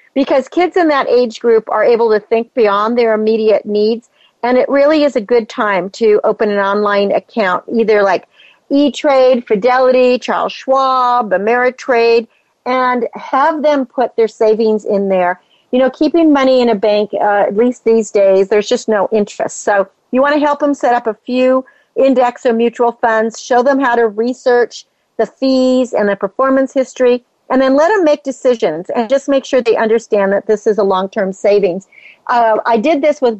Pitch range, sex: 210-255 Hz, female